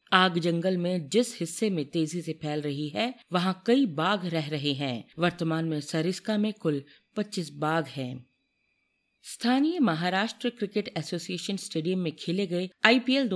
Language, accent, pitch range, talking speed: Hindi, native, 160-215 Hz, 155 wpm